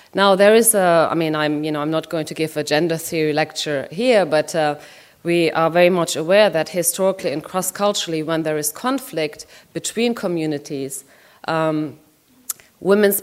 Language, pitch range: English, 150-170 Hz